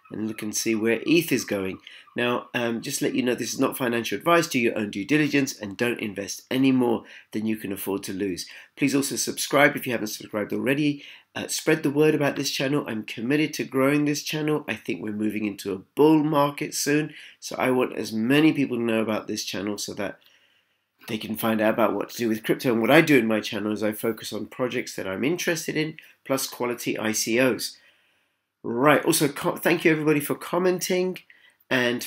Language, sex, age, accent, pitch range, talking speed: English, male, 40-59, British, 110-145 Hz, 220 wpm